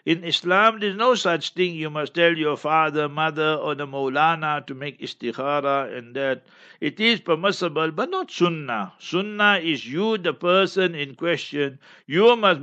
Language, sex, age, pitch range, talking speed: English, male, 60-79, 150-180 Hz, 165 wpm